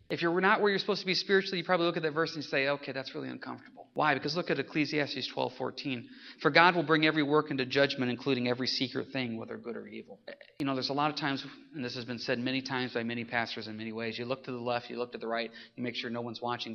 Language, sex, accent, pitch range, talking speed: English, male, American, 130-180 Hz, 285 wpm